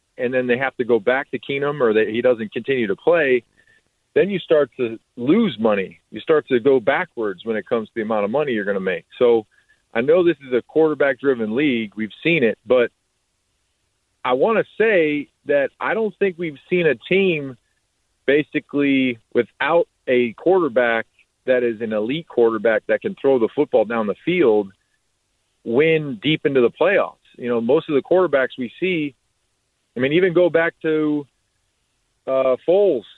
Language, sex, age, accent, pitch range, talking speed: English, male, 40-59, American, 120-175 Hz, 185 wpm